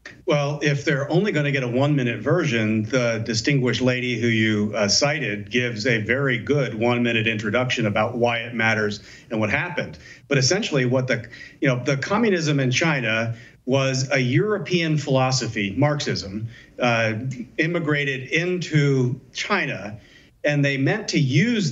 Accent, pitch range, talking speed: American, 125-150 Hz, 150 wpm